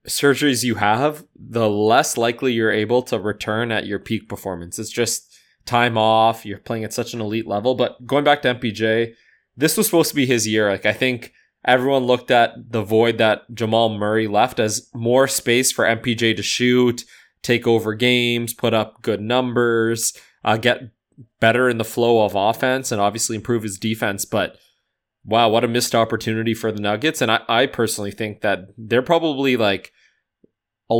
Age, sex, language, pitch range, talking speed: 20-39, male, English, 110-125 Hz, 185 wpm